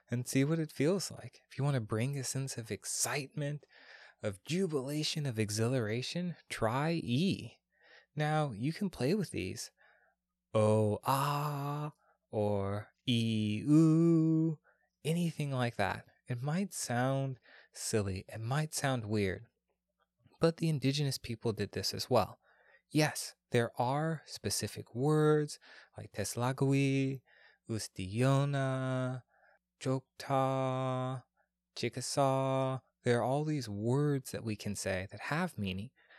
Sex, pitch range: male, 110-145 Hz